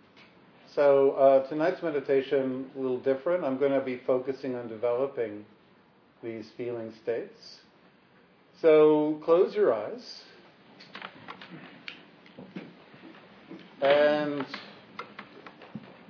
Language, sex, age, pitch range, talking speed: English, male, 50-69, 125-150 Hz, 80 wpm